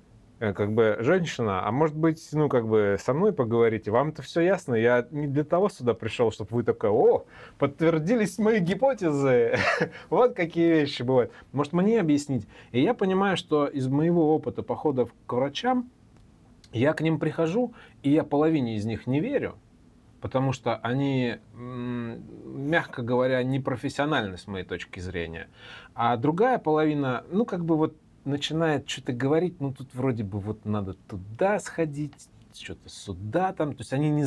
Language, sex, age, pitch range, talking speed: Russian, male, 30-49, 110-155 Hz, 160 wpm